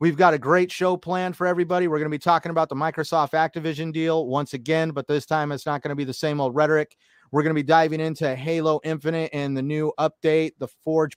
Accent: American